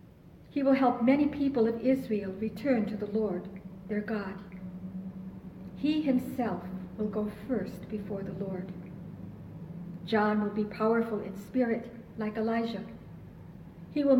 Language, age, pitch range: English, 60-79, 190-245 Hz